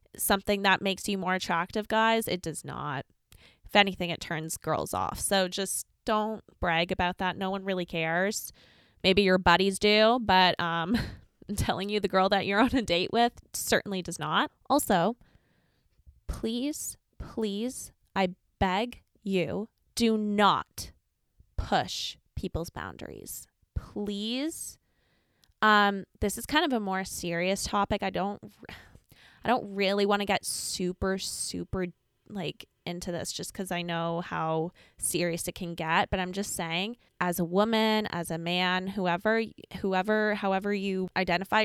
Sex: female